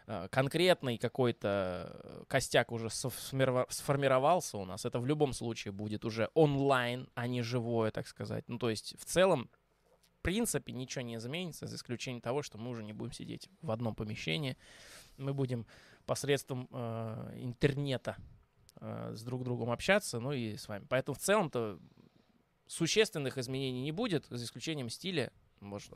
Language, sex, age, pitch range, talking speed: Russian, male, 20-39, 115-150 Hz, 155 wpm